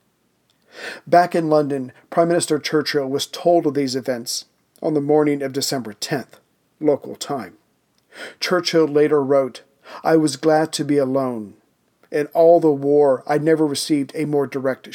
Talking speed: 155 wpm